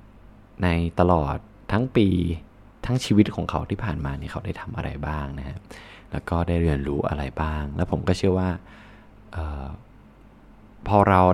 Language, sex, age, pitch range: Thai, male, 20-39, 80-105 Hz